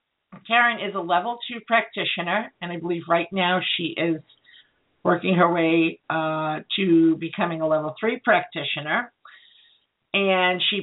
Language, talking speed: English, 140 wpm